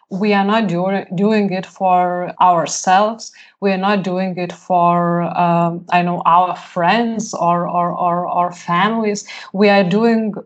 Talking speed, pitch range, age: 155 wpm, 185-210 Hz, 20-39